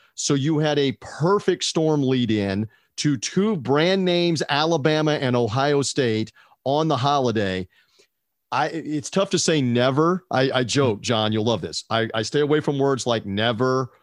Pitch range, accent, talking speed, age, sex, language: 115-150 Hz, American, 170 wpm, 40-59, male, English